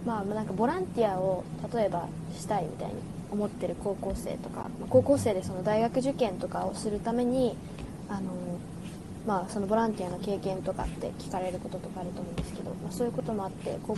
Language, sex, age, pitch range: Japanese, female, 20-39, 185-225 Hz